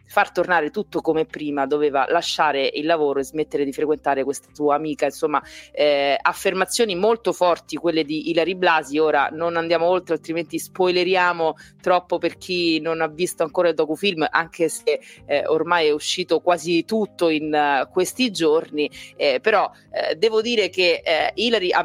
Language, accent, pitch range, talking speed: Italian, native, 155-185 Hz, 170 wpm